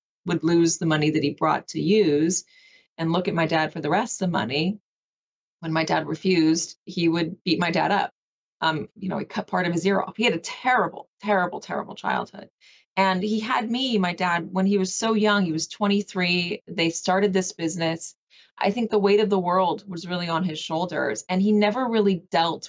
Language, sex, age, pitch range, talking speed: English, female, 30-49, 160-195 Hz, 215 wpm